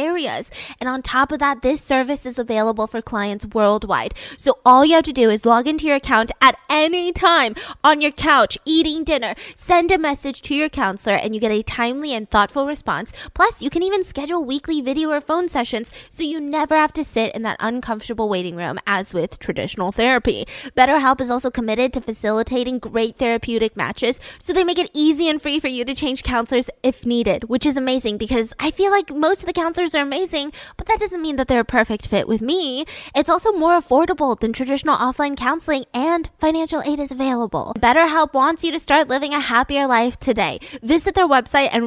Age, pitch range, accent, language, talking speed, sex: 20-39, 230-300 Hz, American, English, 210 wpm, female